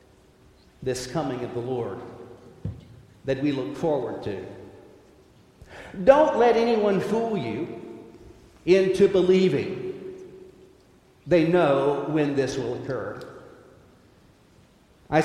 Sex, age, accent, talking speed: male, 50-69, American, 95 wpm